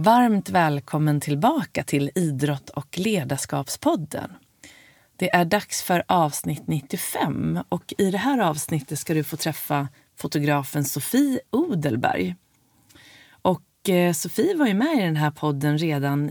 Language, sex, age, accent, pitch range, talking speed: Swedish, female, 30-49, native, 145-190 Hz, 125 wpm